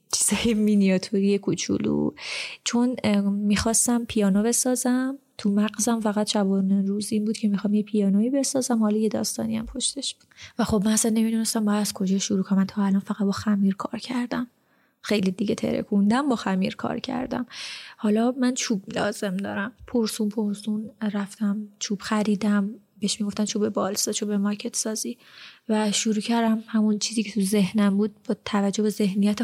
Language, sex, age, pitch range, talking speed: Persian, female, 20-39, 205-240 Hz, 155 wpm